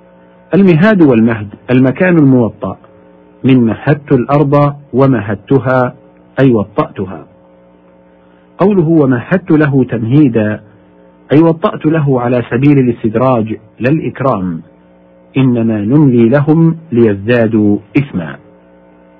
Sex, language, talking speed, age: male, Arabic, 80 wpm, 50-69